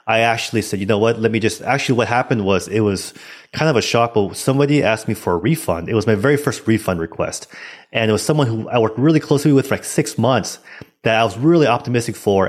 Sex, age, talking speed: male, 30-49, 255 wpm